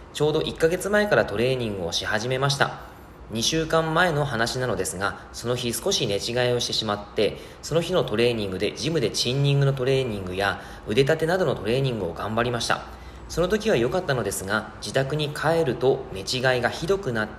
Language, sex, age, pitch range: Japanese, male, 20-39, 105-145 Hz